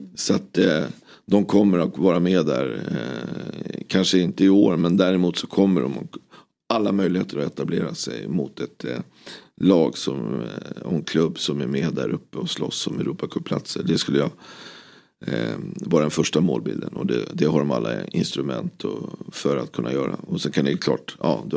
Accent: native